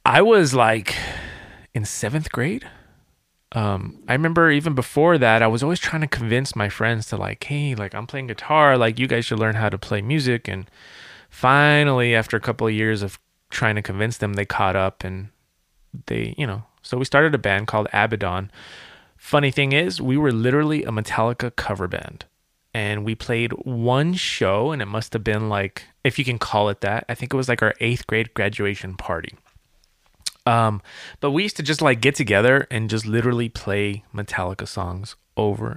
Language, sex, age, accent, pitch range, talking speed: English, male, 20-39, American, 105-130 Hz, 195 wpm